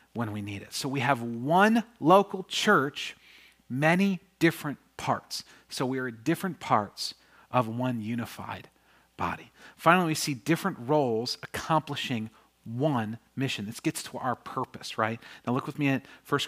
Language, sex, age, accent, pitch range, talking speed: English, male, 40-59, American, 120-190 Hz, 155 wpm